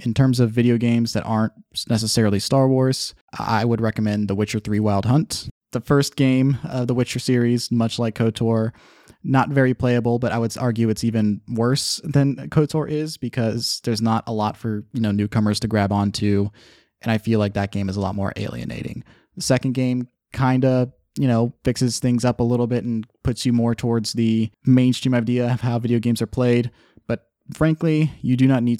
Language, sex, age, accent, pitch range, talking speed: English, male, 20-39, American, 105-125 Hz, 200 wpm